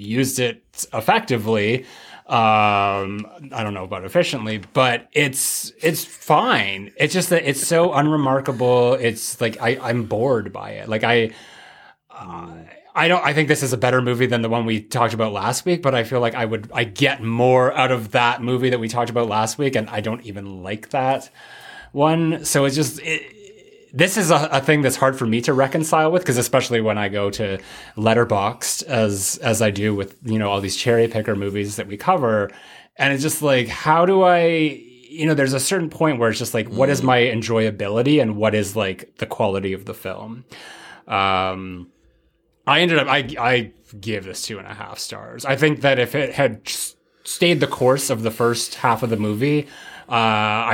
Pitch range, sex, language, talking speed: 110-140 Hz, male, English, 200 wpm